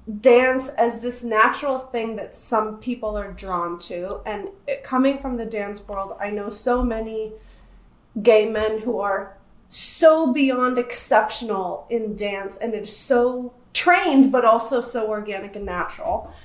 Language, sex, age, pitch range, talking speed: English, female, 30-49, 220-275 Hz, 145 wpm